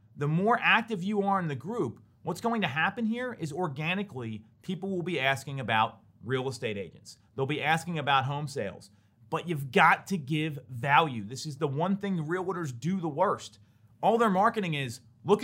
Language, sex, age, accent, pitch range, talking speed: English, male, 30-49, American, 130-195 Hz, 190 wpm